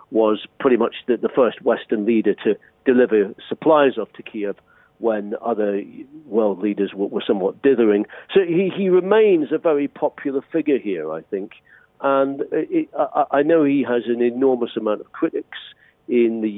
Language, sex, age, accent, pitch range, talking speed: English, male, 50-69, British, 110-155 Hz, 150 wpm